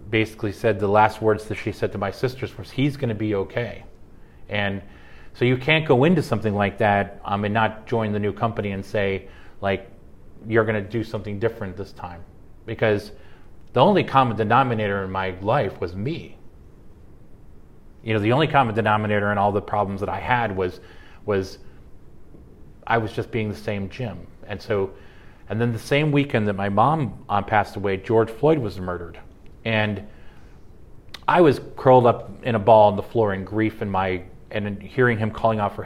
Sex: male